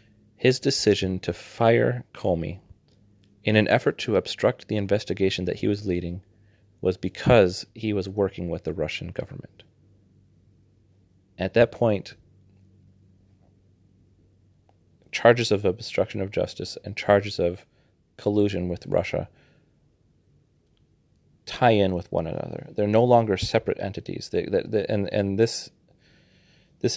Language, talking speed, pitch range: English, 120 wpm, 95-110 Hz